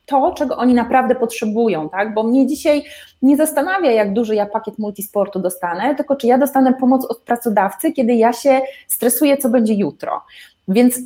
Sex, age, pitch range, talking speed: female, 20-39, 210-260 Hz, 175 wpm